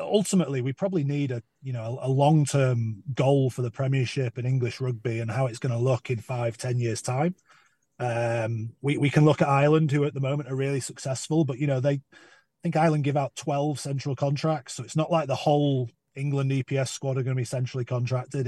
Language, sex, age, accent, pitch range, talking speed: English, male, 30-49, British, 125-145 Hz, 220 wpm